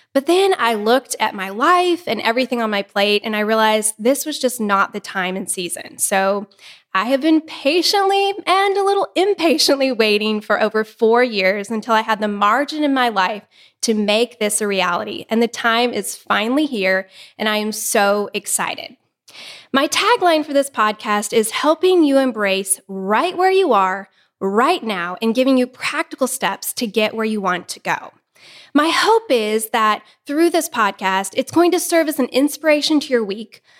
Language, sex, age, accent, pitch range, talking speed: English, female, 10-29, American, 210-295 Hz, 185 wpm